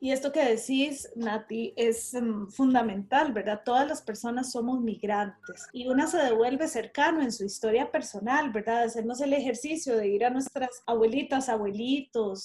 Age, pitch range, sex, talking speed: 30-49, 225-280 Hz, female, 160 wpm